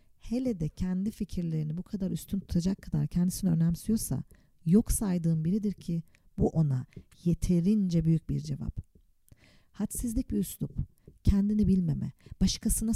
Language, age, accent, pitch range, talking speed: Turkish, 50-69, native, 160-215 Hz, 125 wpm